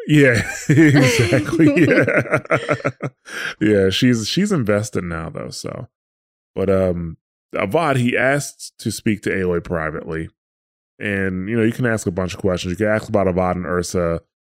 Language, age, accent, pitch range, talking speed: English, 20-39, American, 85-110 Hz, 155 wpm